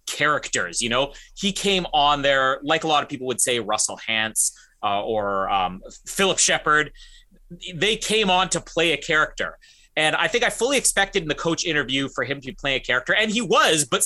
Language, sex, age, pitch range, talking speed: English, male, 30-49, 140-205 Hz, 205 wpm